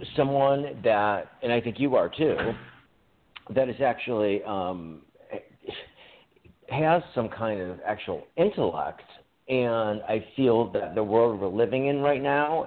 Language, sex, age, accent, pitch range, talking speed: English, male, 40-59, American, 110-150 Hz, 135 wpm